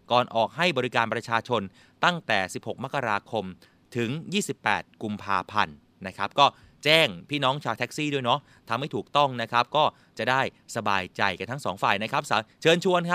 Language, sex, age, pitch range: Thai, male, 30-49, 110-150 Hz